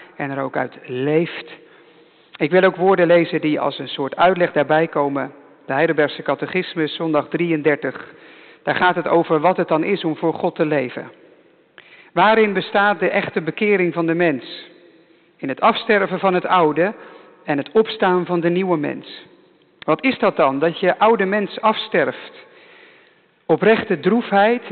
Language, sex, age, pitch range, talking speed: English, male, 50-69, 155-220 Hz, 165 wpm